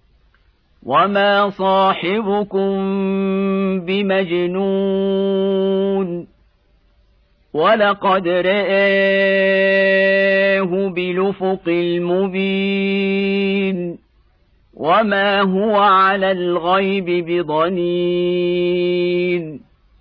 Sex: male